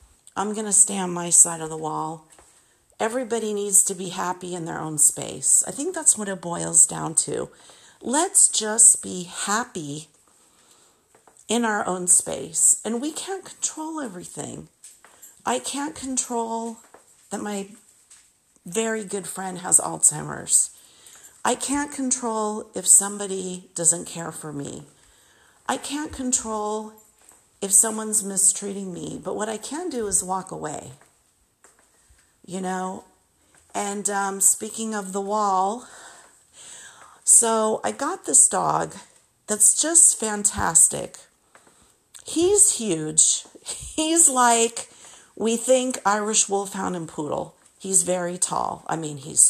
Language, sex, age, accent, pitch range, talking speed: English, female, 50-69, American, 180-230 Hz, 130 wpm